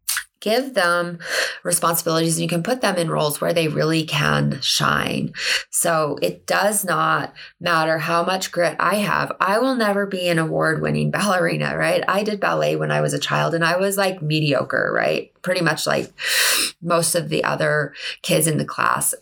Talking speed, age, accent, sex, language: 185 wpm, 20-39, American, female, English